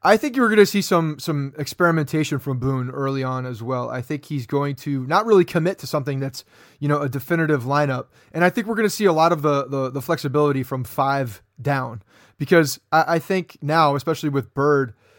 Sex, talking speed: male, 220 wpm